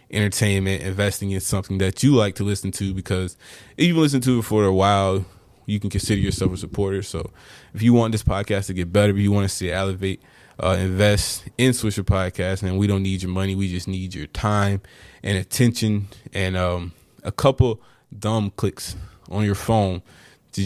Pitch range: 95-105 Hz